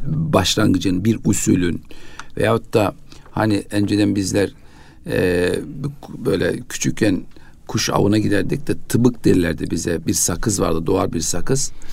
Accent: native